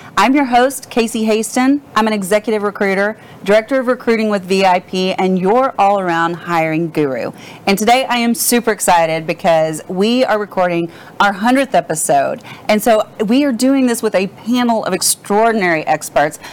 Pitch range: 170-220 Hz